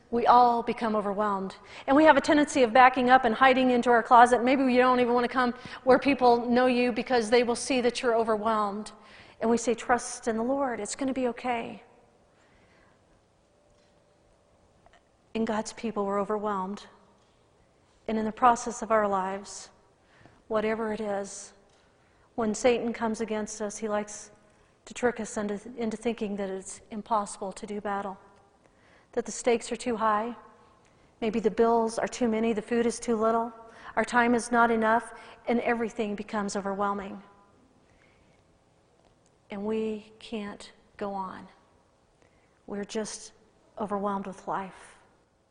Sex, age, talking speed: female, 40-59, 155 wpm